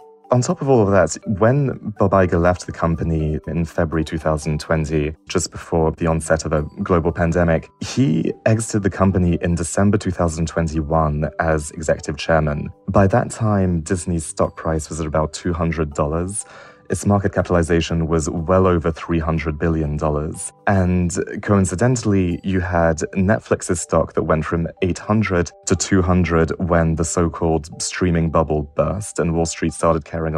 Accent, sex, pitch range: British, male, 80-95 Hz